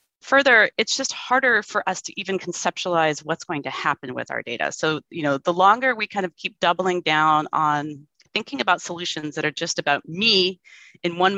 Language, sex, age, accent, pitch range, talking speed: English, female, 30-49, American, 145-190 Hz, 200 wpm